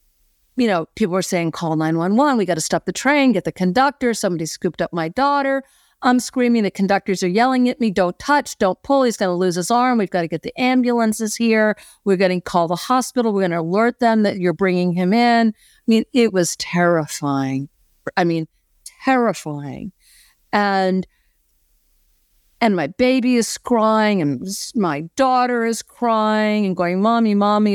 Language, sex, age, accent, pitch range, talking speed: English, female, 50-69, American, 175-235 Hz, 185 wpm